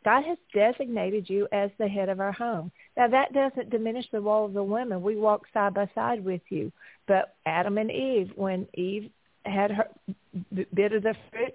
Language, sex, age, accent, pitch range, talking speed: English, female, 40-59, American, 210-255 Hz, 195 wpm